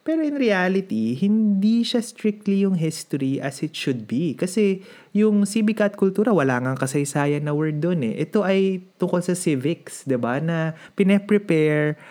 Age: 20-39